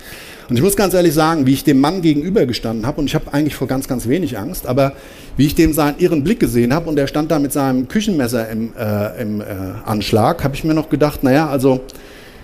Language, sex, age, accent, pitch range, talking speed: German, male, 50-69, German, 105-145 Hz, 240 wpm